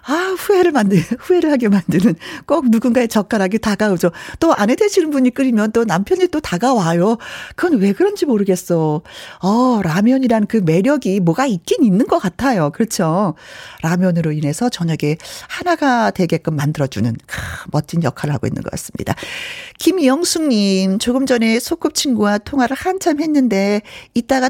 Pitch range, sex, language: 175-275 Hz, female, Korean